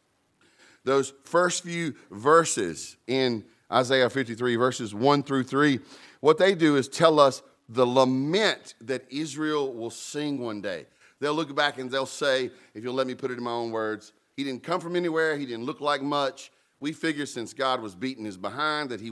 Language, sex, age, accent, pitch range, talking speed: English, male, 40-59, American, 115-150 Hz, 190 wpm